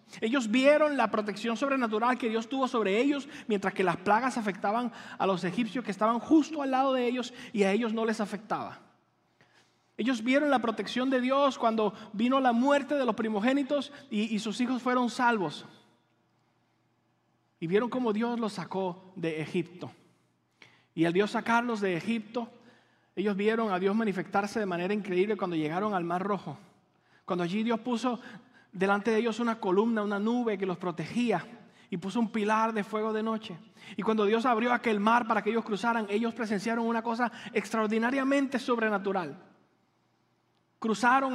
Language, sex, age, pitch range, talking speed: English, male, 30-49, 205-245 Hz, 170 wpm